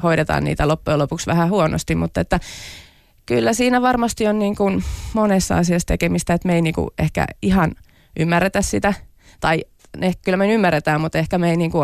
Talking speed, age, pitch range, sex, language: 180 wpm, 30-49, 110-180 Hz, female, Finnish